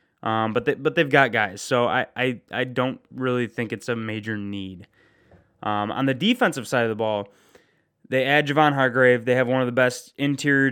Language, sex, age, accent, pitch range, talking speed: English, male, 20-39, American, 115-135 Hz, 205 wpm